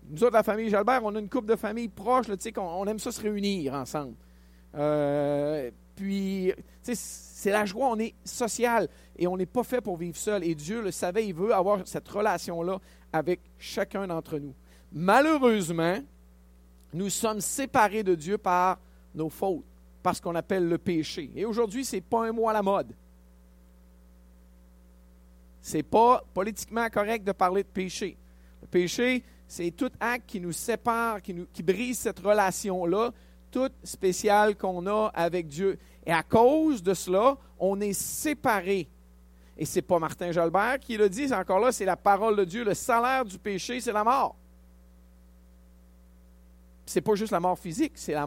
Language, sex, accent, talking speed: French, male, Canadian, 175 wpm